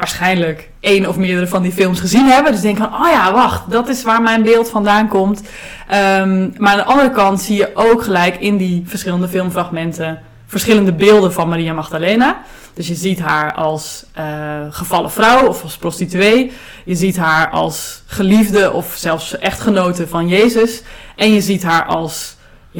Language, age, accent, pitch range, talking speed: Dutch, 20-39, Dutch, 180-215 Hz, 180 wpm